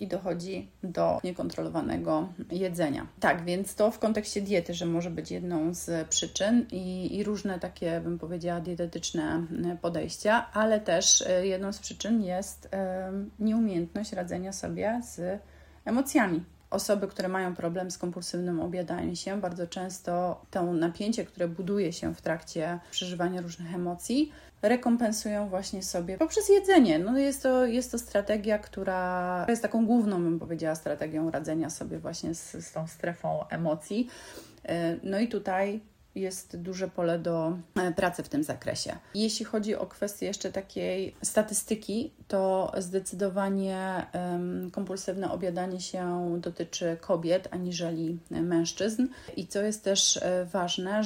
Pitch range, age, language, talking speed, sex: 175-210 Hz, 30-49, Polish, 130 wpm, female